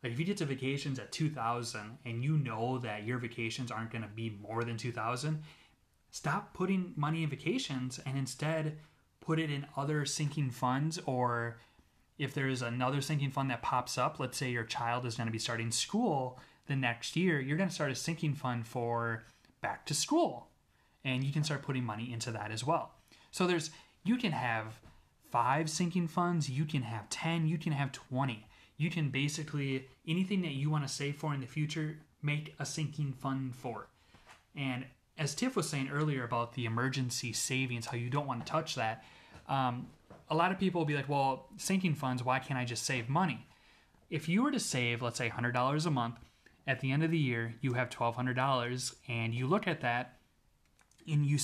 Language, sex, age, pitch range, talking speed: English, male, 20-39, 120-155 Hz, 200 wpm